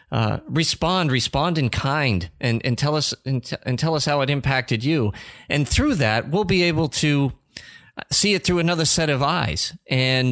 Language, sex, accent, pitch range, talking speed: English, male, American, 115-165 Hz, 185 wpm